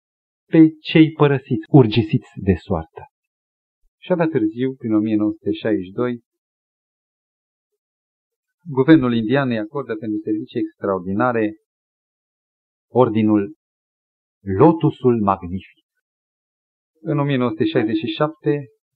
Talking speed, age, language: 75 wpm, 40-59, Romanian